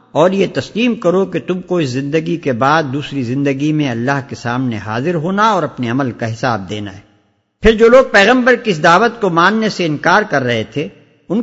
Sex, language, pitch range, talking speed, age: male, English, 130-185 Hz, 210 wpm, 50-69